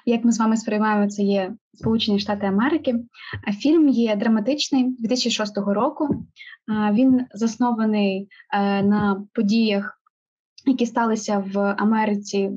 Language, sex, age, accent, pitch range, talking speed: Ukrainian, female, 20-39, native, 205-240 Hz, 110 wpm